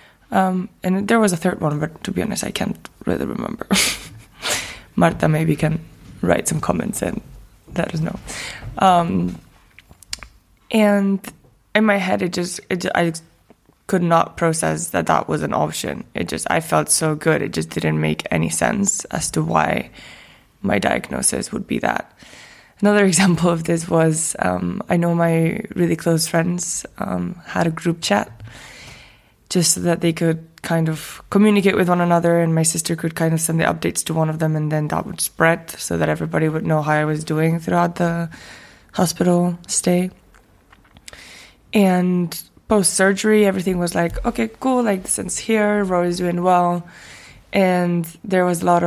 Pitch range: 150-185 Hz